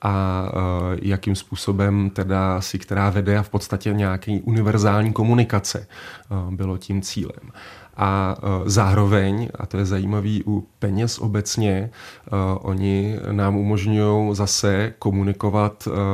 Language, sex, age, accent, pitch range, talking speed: Czech, male, 20-39, native, 95-105 Hz, 110 wpm